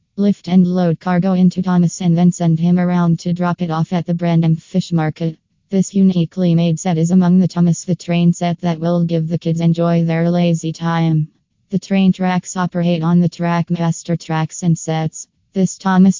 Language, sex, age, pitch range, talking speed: English, female, 20-39, 165-180 Hz, 195 wpm